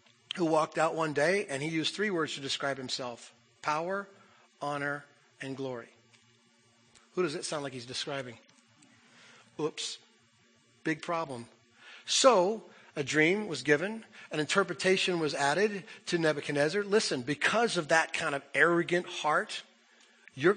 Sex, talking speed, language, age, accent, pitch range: male, 135 wpm, English, 40-59, American, 130-180 Hz